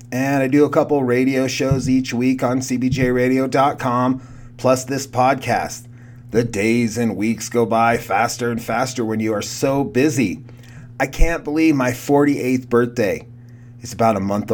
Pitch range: 115-135 Hz